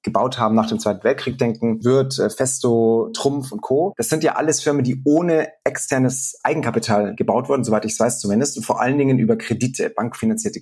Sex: male